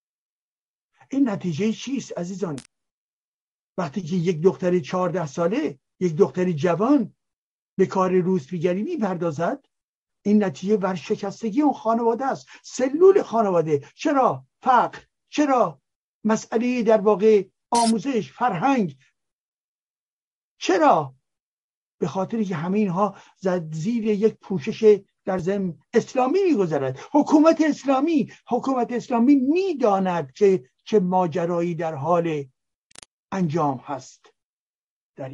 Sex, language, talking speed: male, Persian, 105 wpm